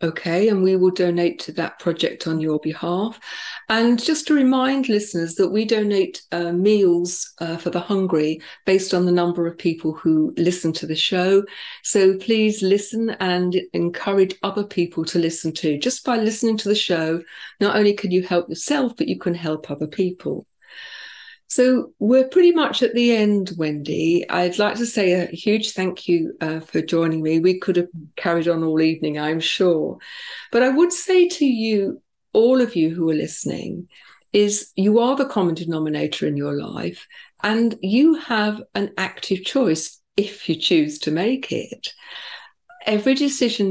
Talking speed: 175 wpm